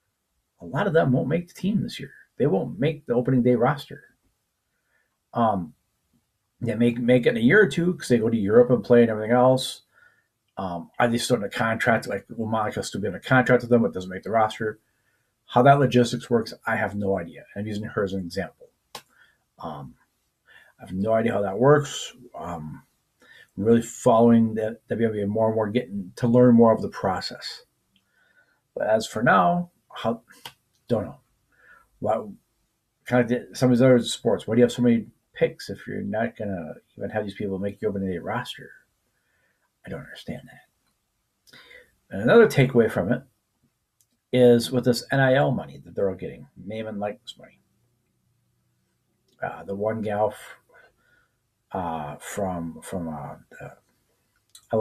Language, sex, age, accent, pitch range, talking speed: English, male, 40-59, American, 105-130 Hz, 180 wpm